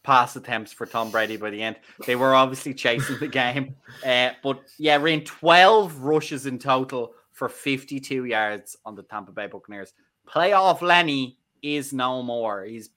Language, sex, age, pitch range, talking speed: English, male, 20-39, 110-145 Hz, 170 wpm